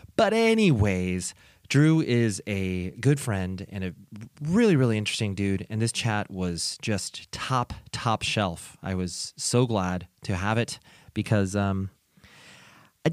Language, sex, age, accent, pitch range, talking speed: English, male, 30-49, American, 95-120 Hz, 140 wpm